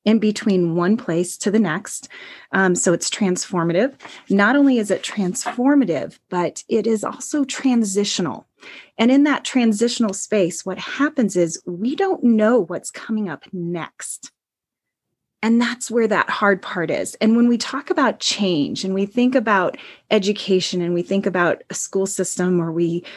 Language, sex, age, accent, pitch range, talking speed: English, female, 30-49, American, 175-225 Hz, 165 wpm